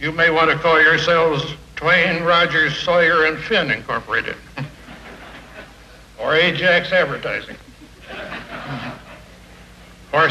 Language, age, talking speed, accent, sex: English, 60-79, 95 wpm, American, male